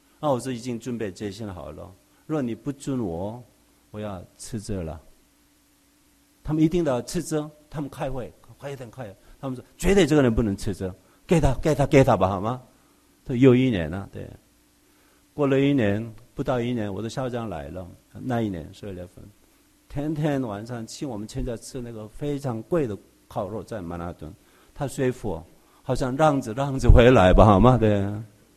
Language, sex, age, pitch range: English, male, 50-69, 105-140 Hz